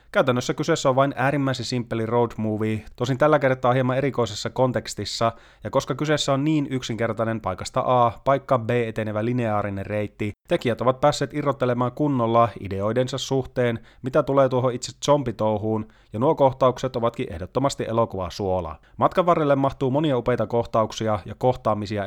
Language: Finnish